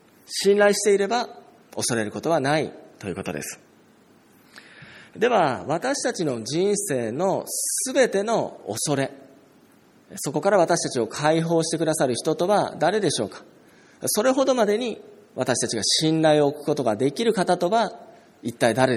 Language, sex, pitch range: Japanese, male, 130-205 Hz